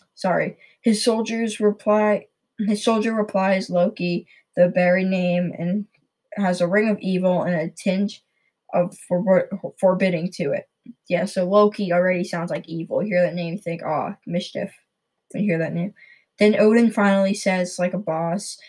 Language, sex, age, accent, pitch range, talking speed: English, female, 10-29, American, 180-205 Hz, 160 wpm